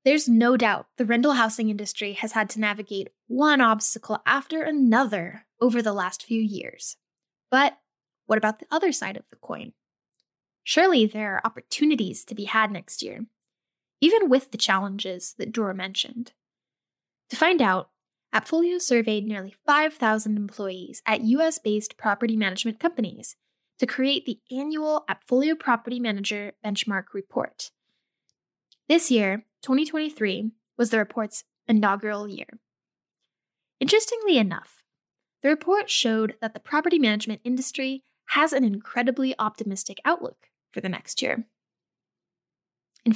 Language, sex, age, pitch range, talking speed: English, female, 10-29, 210-270 Hz, 135 wpm